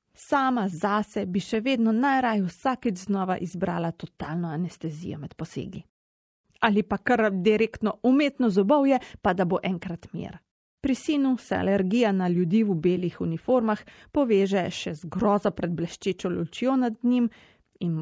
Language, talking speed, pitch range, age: Italian, 140 wpm, 175-240 Hz, 30-49